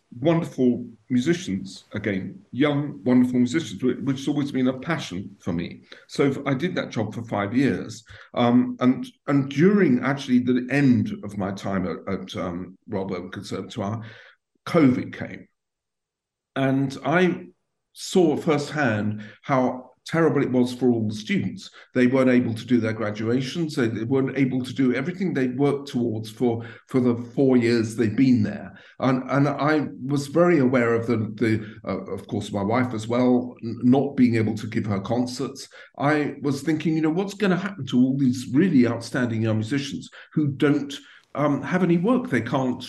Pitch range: 115-140 Hz